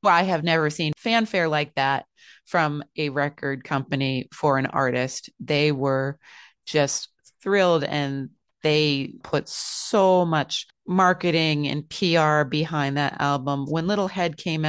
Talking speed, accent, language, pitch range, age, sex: 140 wpm, American, English, 145-180 Hz, 30-49, female